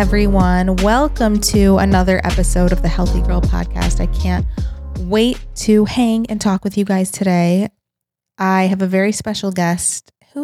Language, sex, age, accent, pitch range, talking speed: English, female, 20-39, American, 175-195 Hz, 160 wpm